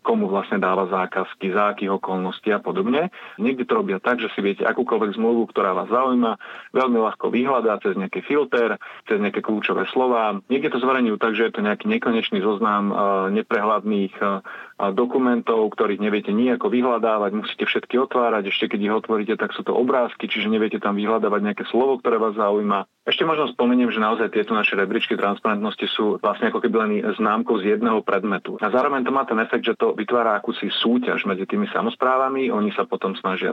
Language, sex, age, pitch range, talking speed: Slovak, male, 40-59, 100-125 Hz, 185 wpm